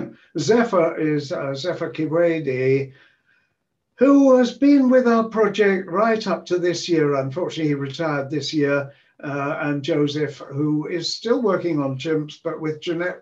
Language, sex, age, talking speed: English, male, 60-79, 150 wpm